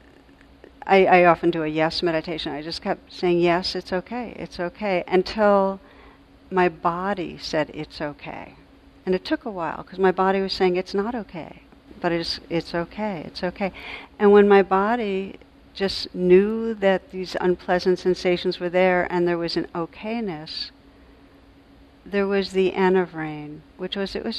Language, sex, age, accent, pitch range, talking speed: English, female, 60-79, American, 170-195 Hz, 165 wpm